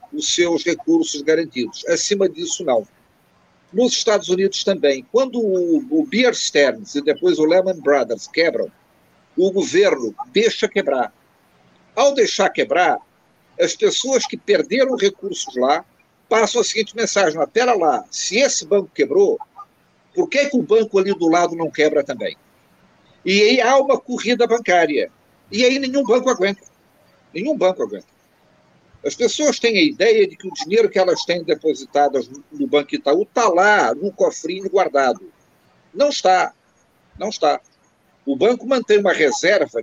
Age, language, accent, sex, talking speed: 50-69, Portuguese, Brazilian, male, 150 wpm